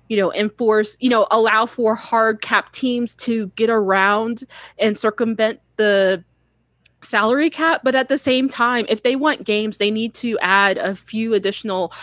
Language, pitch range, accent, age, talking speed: English, 200-240 Hz, American, 20-39, 170 wpm